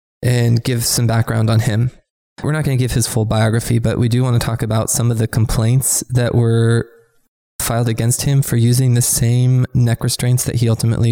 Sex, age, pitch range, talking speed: male, 20-39, 110-125 Hz, 210 wpm